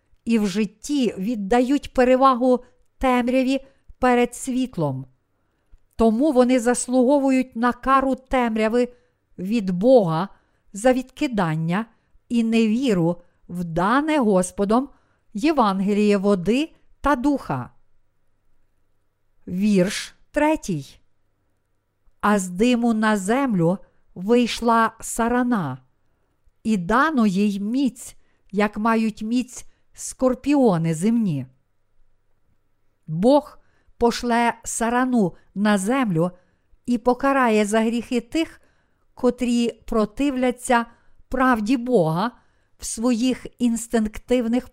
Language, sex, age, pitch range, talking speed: Ukrainian, female, 50-69, 185-250 Hz, 85 wpm